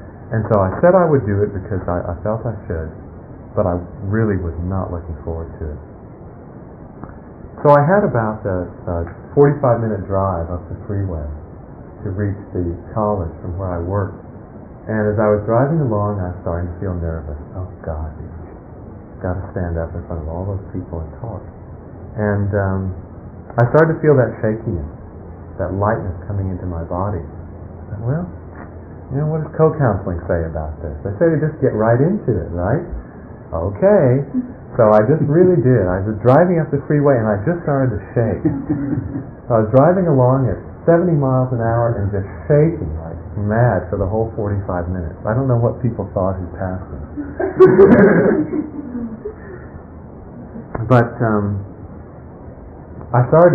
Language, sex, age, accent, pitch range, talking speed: English, male, 40-59, American, 90-120 Hz, 170 wpm